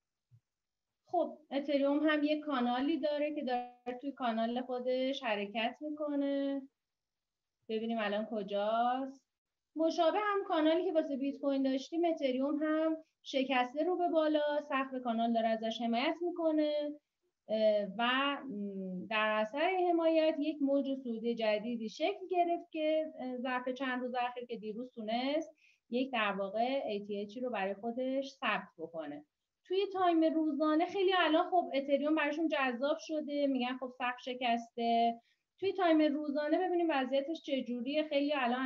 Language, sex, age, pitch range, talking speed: Persian, female, 30-49, 235-310 Hz, 130 wpm